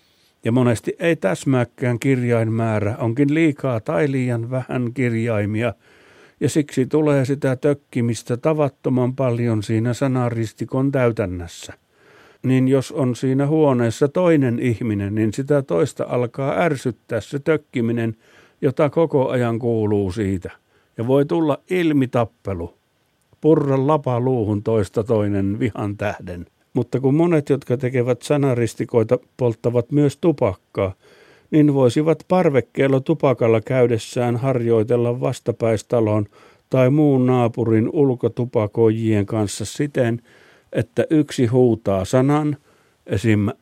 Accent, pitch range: native, 115-140 Hz